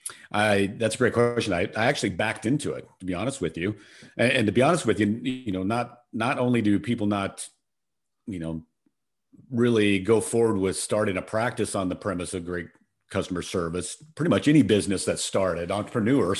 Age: 50-69